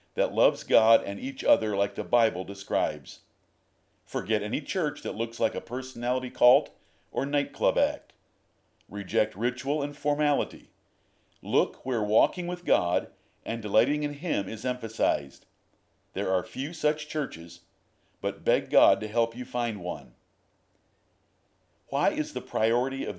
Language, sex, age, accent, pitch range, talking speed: English, male, 50-69, American, 100-140 Hz, 140 wpm